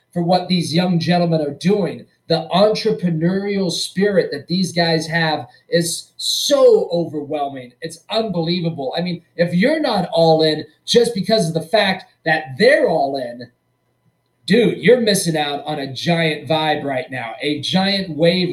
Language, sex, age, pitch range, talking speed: English, male, 30-49, 160-210 Hz, 155 wpm